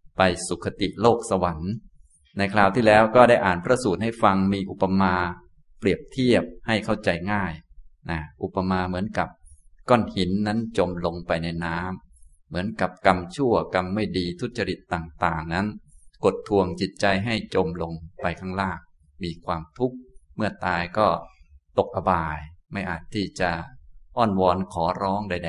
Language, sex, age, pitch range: Thai, male, 20-39, 85-100 Hz